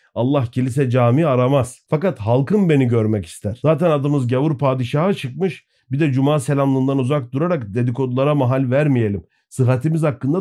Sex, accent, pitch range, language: male, native, 125-165 Hz, Turkish